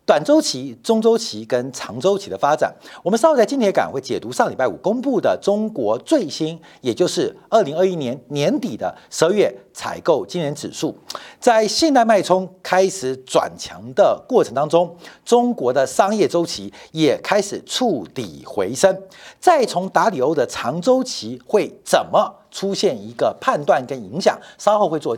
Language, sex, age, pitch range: Chinese, male, 50-69, 175-285 Hz